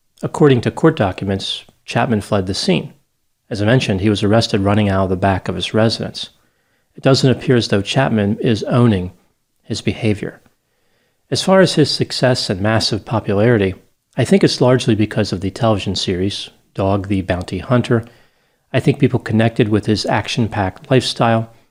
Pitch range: 105-125 Hz